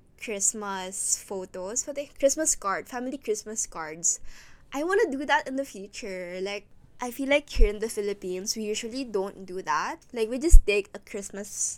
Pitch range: 195-230 Hz